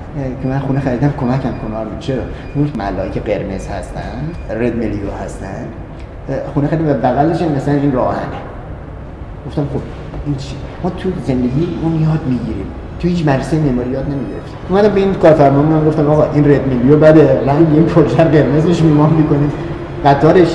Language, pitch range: Persian, 135-160 Hz